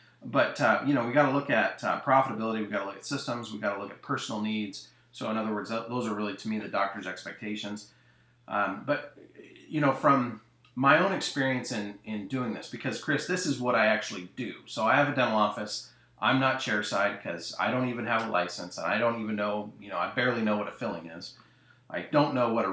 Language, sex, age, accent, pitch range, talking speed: English, male, 30-49, American, 100-125 Hz, 240 wpm